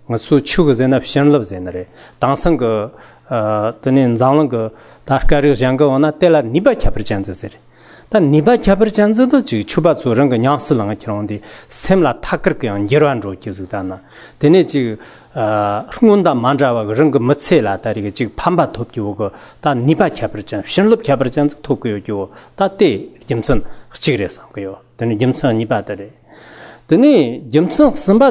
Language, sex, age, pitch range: English, male, 40-59, 110-155 Hz